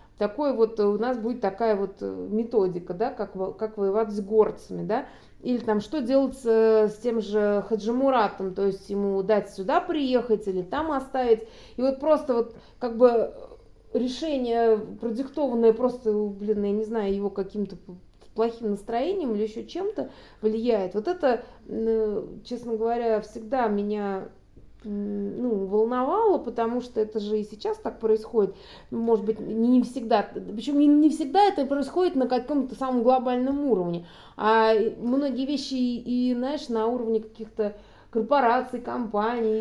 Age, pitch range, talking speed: 30-49, 215-260 Hz, 140 wpm